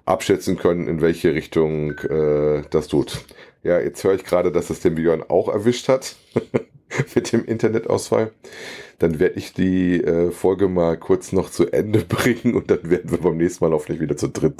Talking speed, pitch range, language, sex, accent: 190 wpm, 85-110 Hz, German, male, German